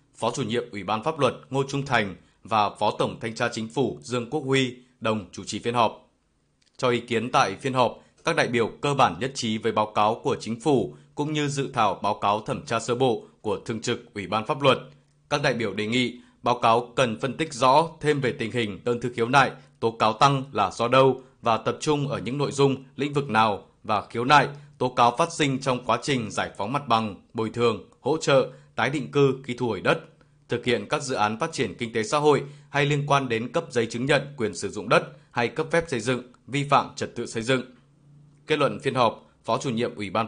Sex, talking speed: male, 245 wpm